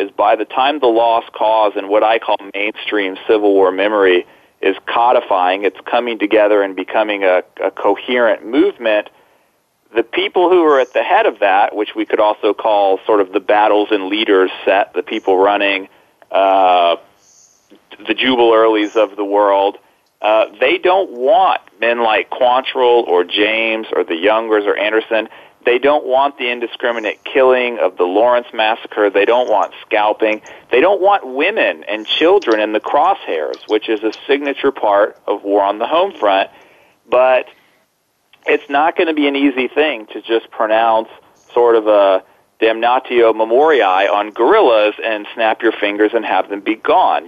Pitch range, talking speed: 100-125 Hz, 170 wpm